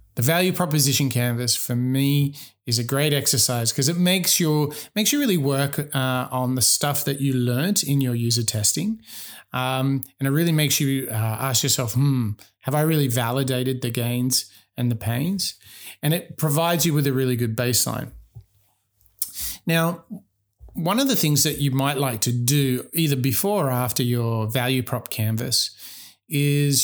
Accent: Australian